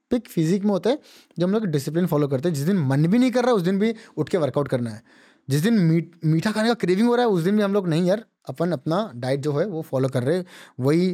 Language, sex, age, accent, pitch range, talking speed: Hindi, male, 20-39, native, 135-190 Hz, 290 wpm